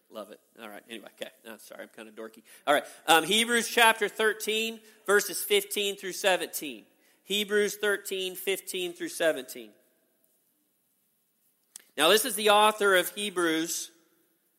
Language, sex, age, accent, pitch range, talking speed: English, male, 40-59, American, 165-215 Hz, 140 wpm